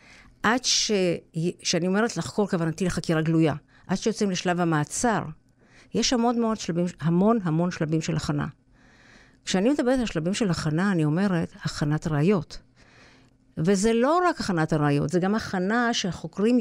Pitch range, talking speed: 160-210 Hz, 145 wpm